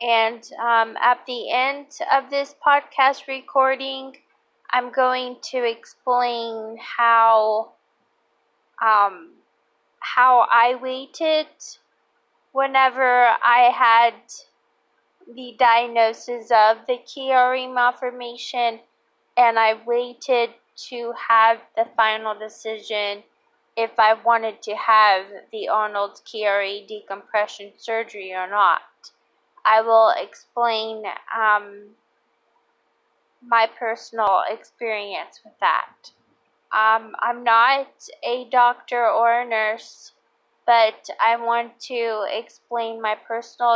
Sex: female